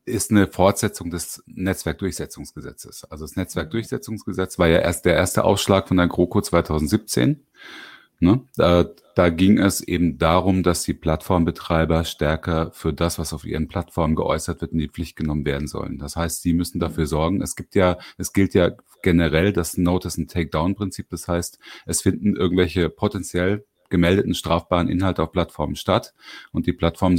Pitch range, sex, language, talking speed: 80-95 Hz, male, German, 165 wpm